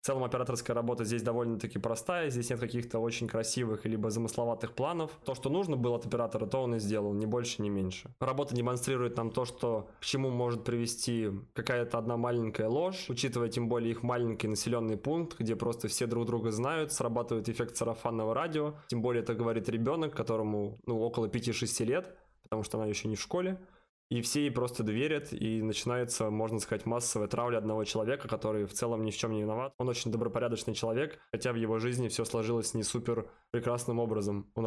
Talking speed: 190 wpm